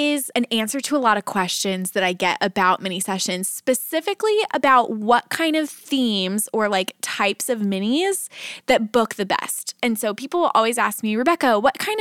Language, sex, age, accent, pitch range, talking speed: English, female, 20-39, American, 200-290 Hz, 195 wpm